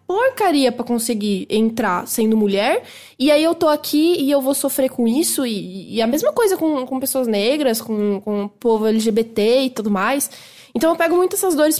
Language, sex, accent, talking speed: English, female, Brazilian, 200 wpm